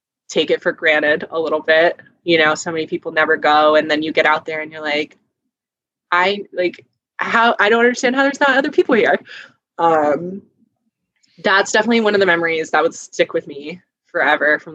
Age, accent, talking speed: 20-39, American, 200 wpm